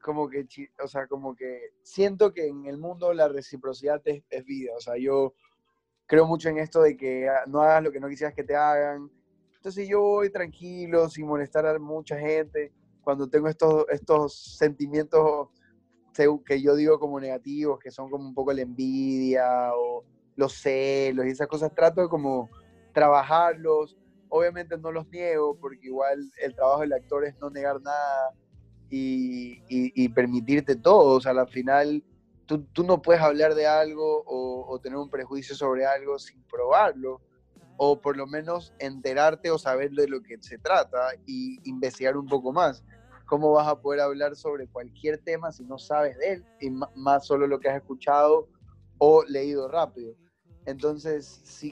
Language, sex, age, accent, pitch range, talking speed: Spanish, male, 20-39, Argentinian, 130-155 Hz, 175 wpm